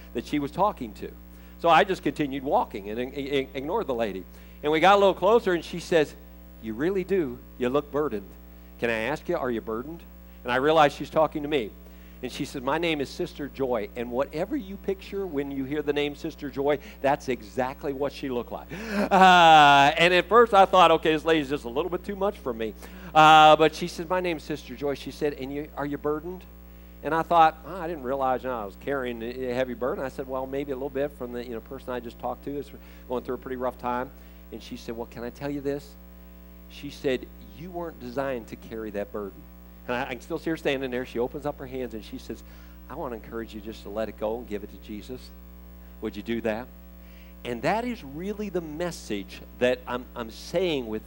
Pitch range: 100-155 Hz